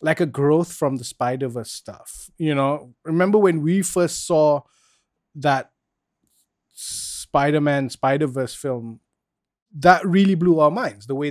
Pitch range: 135-180 Hz